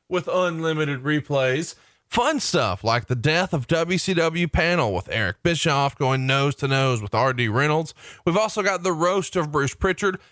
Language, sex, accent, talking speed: English, male, American, 170 wpm